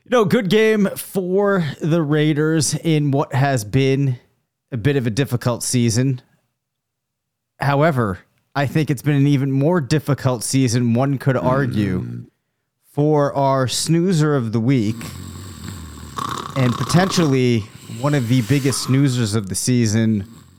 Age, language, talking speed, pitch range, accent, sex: 30-49, English, 135 wpm, 115-145 Hz, American, male